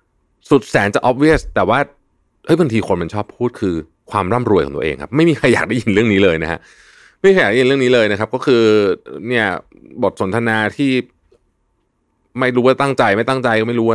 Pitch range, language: 90-125 Hz, Thai